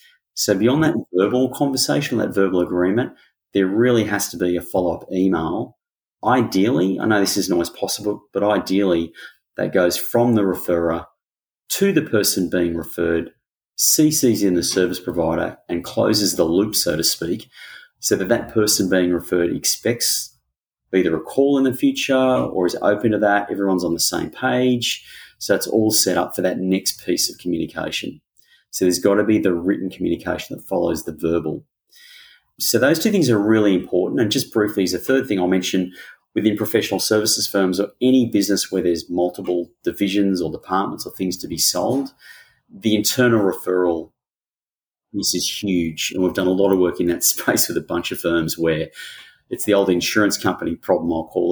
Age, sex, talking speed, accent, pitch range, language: 30-49, male, 180 wpm, Australian, 90-110 Hz, English